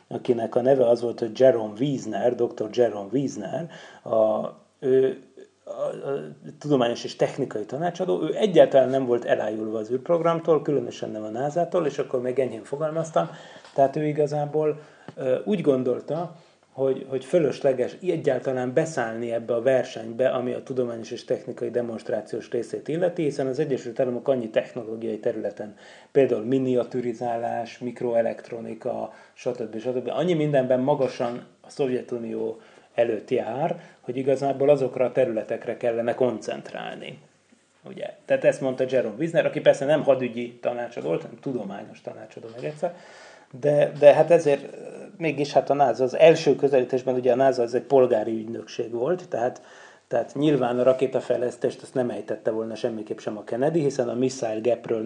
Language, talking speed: Hungarian, 145 wpm